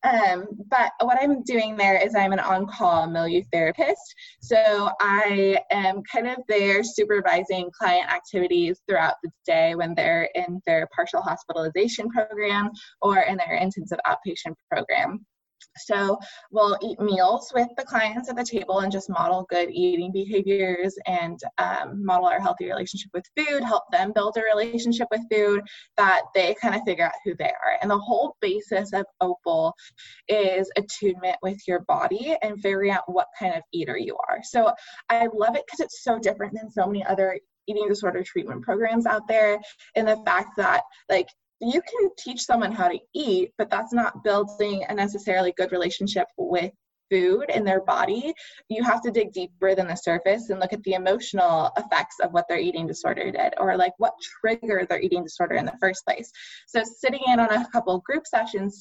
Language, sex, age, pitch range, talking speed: English, female, 20-39, 190-255 Hz, 185 wpm